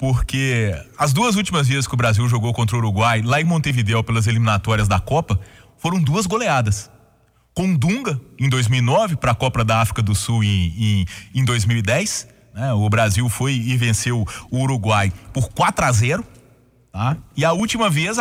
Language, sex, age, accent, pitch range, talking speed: Portuguese, male, 30-49, Brazilian, 115-155 Hz, 165 wpm